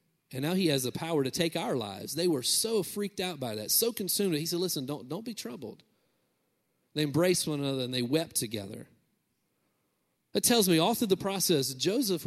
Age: 40-59